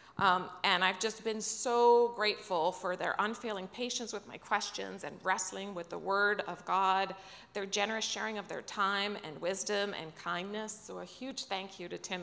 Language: English